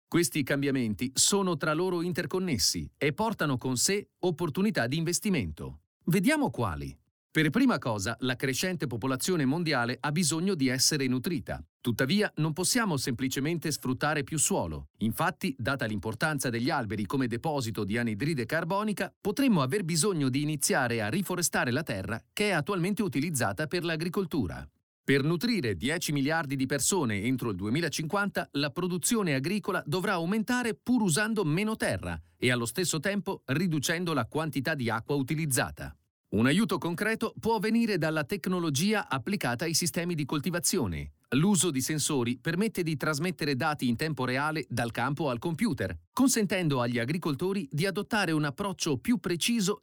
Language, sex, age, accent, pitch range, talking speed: Italian, male, 40-59, native, 125-185 Hz, 145 wpm